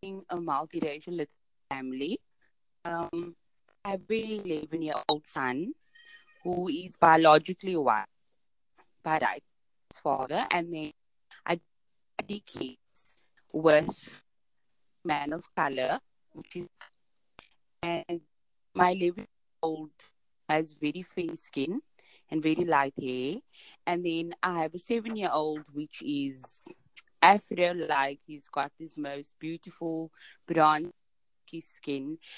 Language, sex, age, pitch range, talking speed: English, female, 20-39, 155-195 Hz, 100 wpm